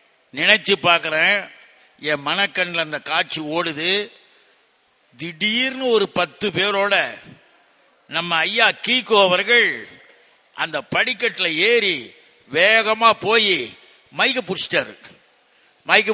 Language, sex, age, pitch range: Tamil, male, 60-79, 170-210 Hz